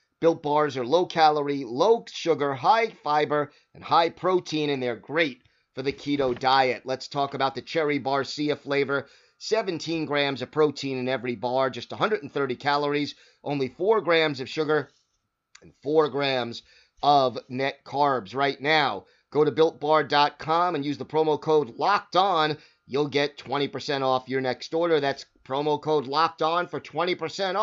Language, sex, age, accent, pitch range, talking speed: English, male, 30-49, American, 135-160 Hz, 150 wpm